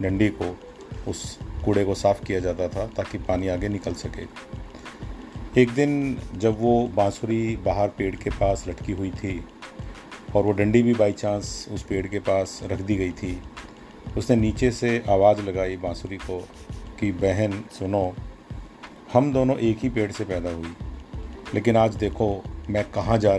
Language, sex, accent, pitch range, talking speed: Hindi, male, native, 95-110 Hz, 165 wpm